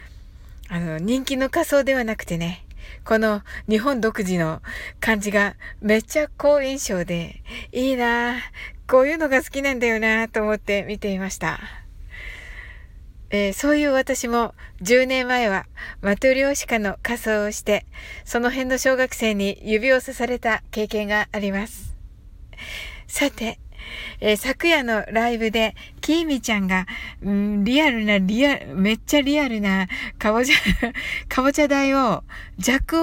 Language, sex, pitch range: Japanese, female, 200-265 Hz